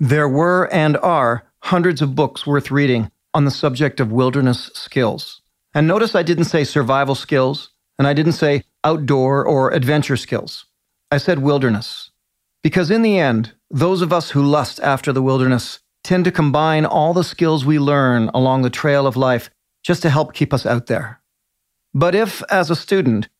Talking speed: 180 wpm